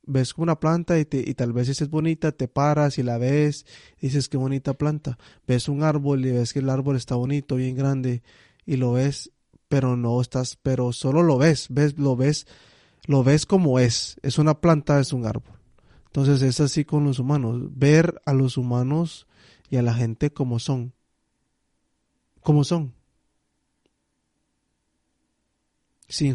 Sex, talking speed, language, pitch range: male, 170 wpm, English, 125-145 Hz